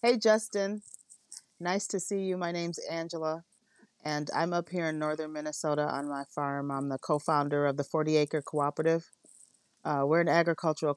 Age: 30-49